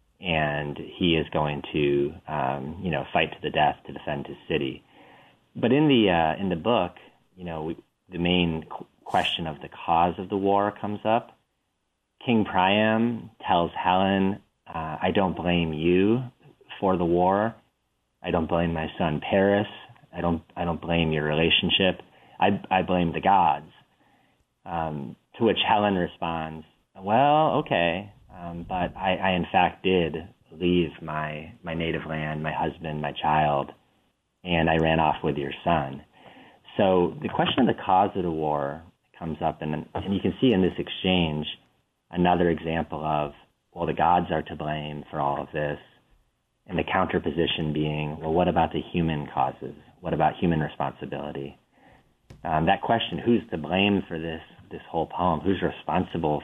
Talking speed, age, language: 170 wpm, 30-49, English